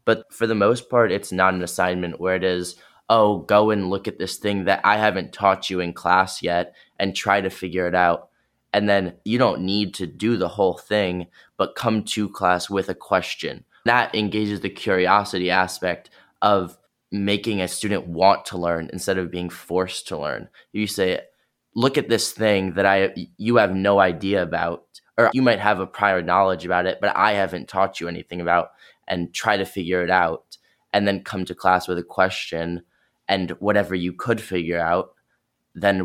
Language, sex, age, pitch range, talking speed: English, male, 20-39, 90-100 Hz, 195 wpm